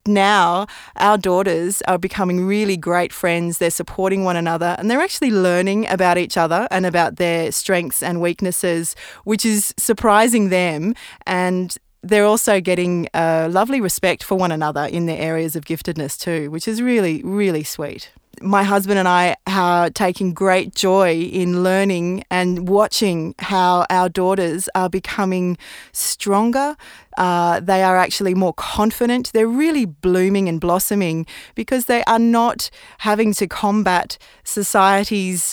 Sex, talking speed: female, 145 wpm